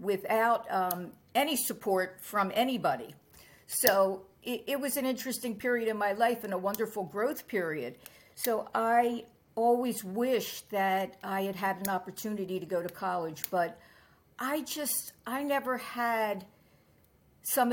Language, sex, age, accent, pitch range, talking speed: English, female, 50-69, American, 190-240 Hz, 140 wpm